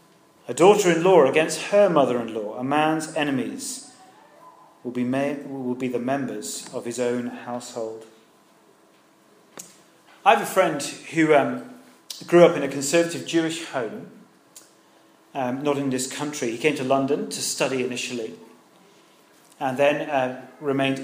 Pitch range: 130-165 Hz